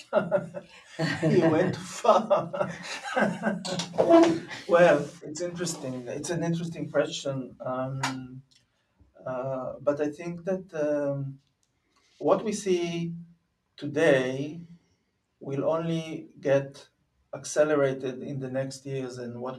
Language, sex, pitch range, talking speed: English, male, 135-170 Hz, 95 wpm